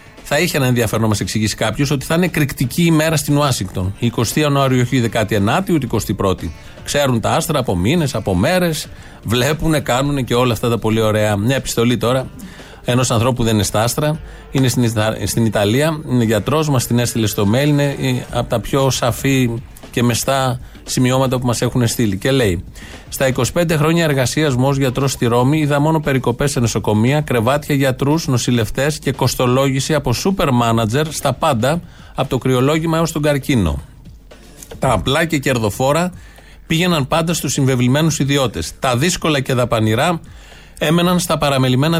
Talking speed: 165 wpm